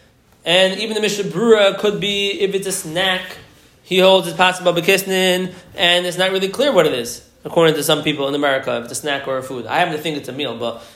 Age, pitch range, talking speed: 20-39, 145-180 Hz, 240 wpm